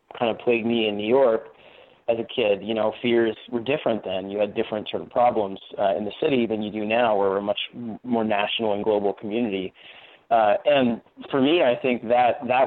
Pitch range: 105-125 Hz